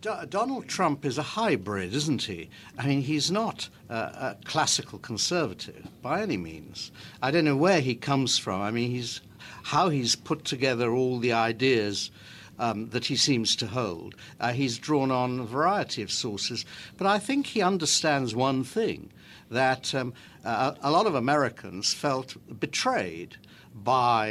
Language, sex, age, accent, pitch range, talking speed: English, male, 60-79, British, 110-145 Hz, 165 wpm